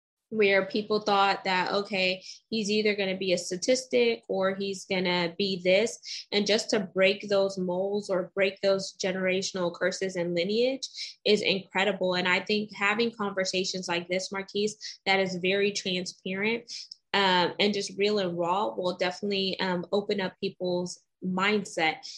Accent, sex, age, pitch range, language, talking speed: American, female, 20-39, 185-210 Hz, English, 155 wpm